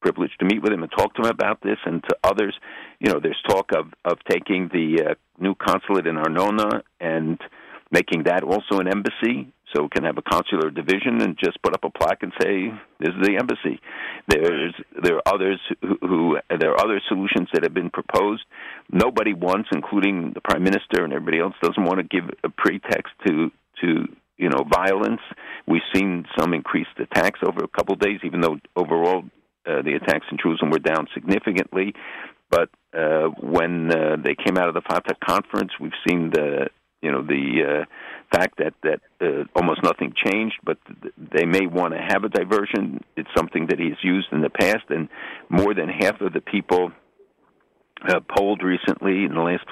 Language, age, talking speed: English, 50-69, 195 wpm